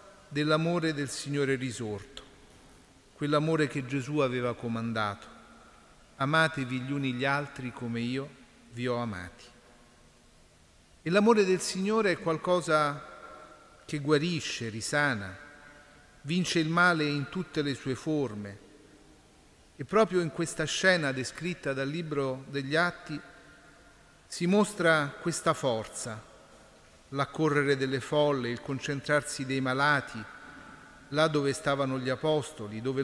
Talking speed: 115 wpm